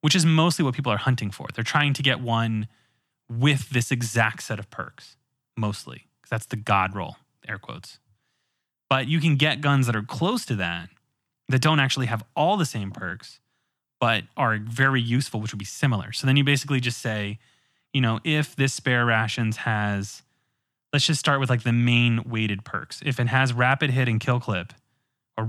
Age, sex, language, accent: 20-39, male, English, American